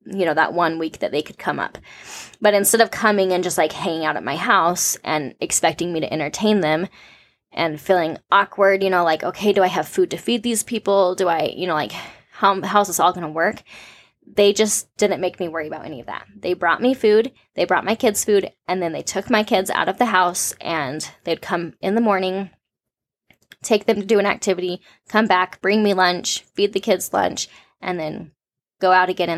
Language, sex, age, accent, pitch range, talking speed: English, female, 10-29, American, 175-215 Hz, 225 wpm